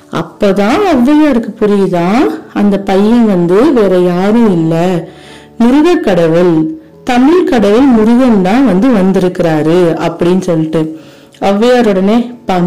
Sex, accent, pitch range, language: female, native, 190-255 Hz, Tamil